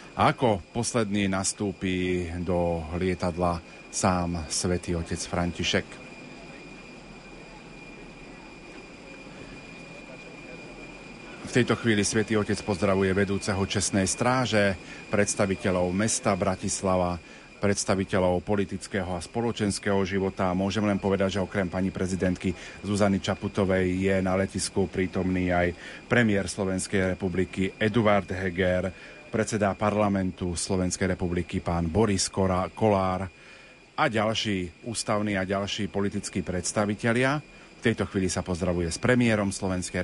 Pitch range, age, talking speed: 90-105 Hz, 40-59, 100 wpm